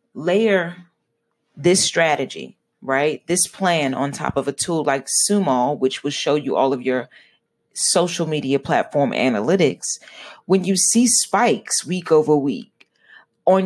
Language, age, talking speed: English, 30-49, 140 wpm